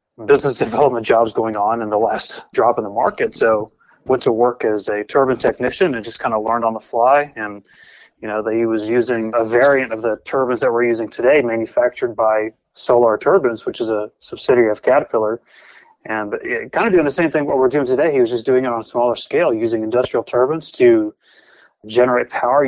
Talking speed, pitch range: 215 wpm, 110-130 Hz